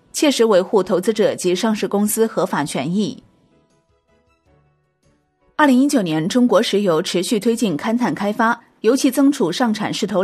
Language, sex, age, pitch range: Chinese, female, 30-49, 175-235 Hz